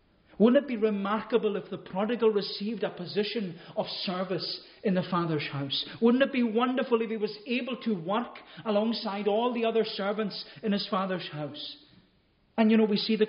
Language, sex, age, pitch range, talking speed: English, male, 40-59, 150-210 Hz, 185 wpm